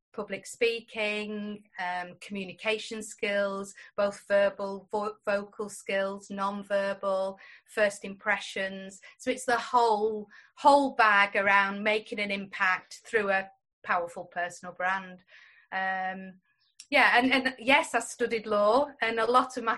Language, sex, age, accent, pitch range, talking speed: English, female, 30-49, British, 200-240 Hz, 125 wpm